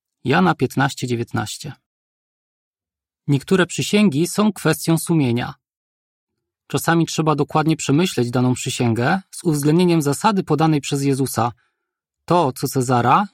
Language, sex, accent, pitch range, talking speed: Polish, male, native, 130-170 Hz, 105 wpm